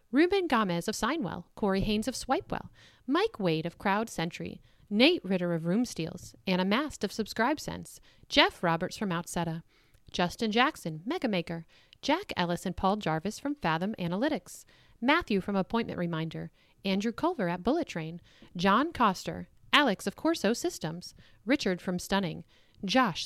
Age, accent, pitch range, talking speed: 40-59, American, 175-255 Hz, 140 wpm